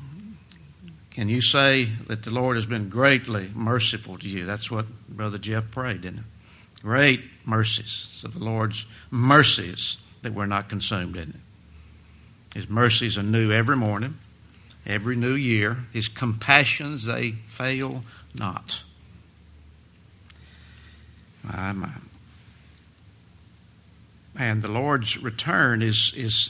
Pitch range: 100-120 Hz